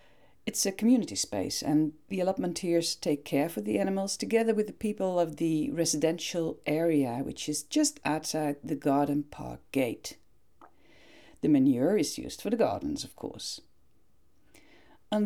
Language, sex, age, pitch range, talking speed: Dutch, female, 50-69, 145-215 Hz, 150 wpm